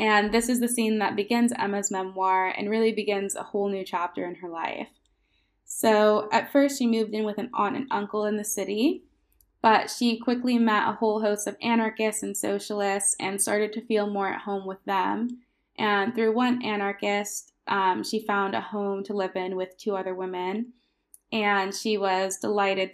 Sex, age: female, 20-39